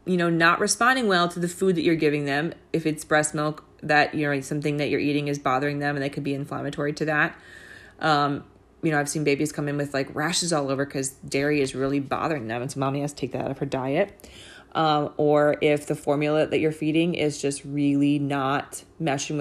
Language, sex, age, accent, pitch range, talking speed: English, female, 20-39, American, 145-175 Hz, 235 wpm